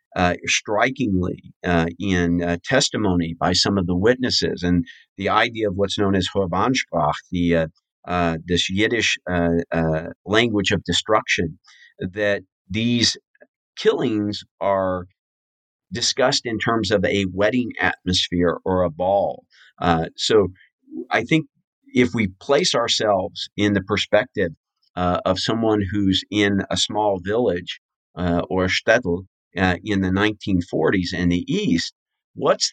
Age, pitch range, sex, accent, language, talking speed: 50-69, 90-105 Hz, male, American, English, 135 wpm